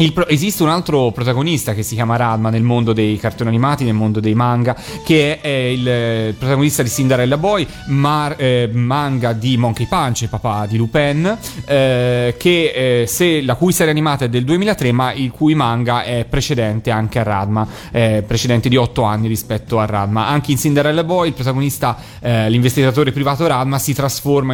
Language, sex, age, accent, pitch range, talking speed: Italian, male, 30-49, native, 115-140 Hz, 185 wpm